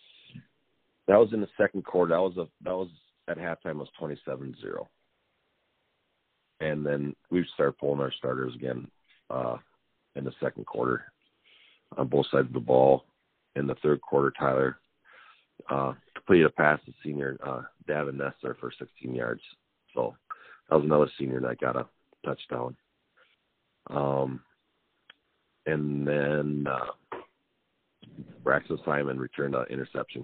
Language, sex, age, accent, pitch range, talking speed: English, male, 40-59, American, 70-80 Hz, 140 wpm